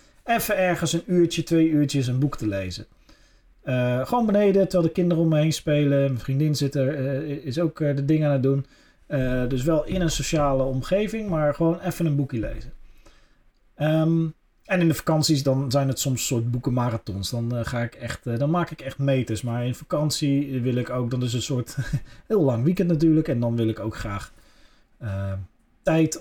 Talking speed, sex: 205 wpm, male